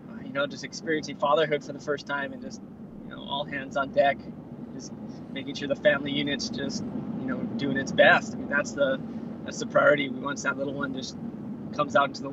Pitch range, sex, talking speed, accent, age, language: 160-235 Hz, male, 220 wpm, American, 20-39, English